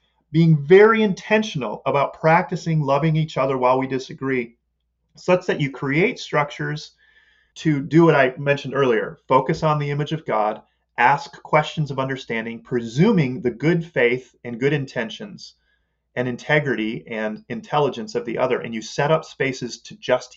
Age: 30-49